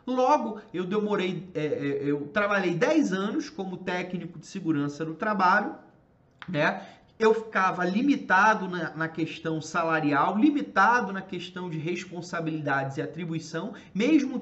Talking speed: 115 wpm